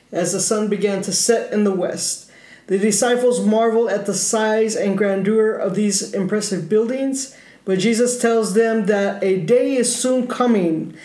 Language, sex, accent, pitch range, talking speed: English, male, American, 200-240 Hz, 170 wpm